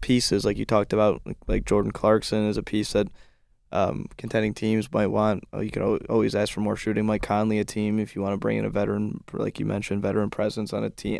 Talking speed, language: 250 wpm, English